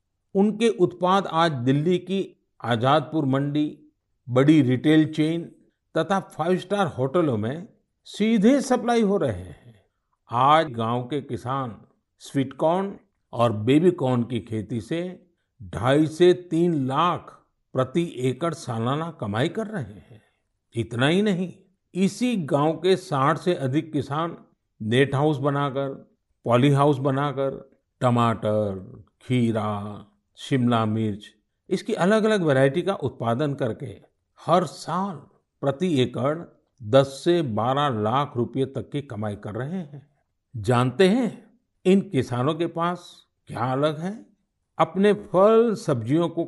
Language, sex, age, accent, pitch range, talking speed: Hindi, male, 50-69, native, 125-175 Hz, 125 wpm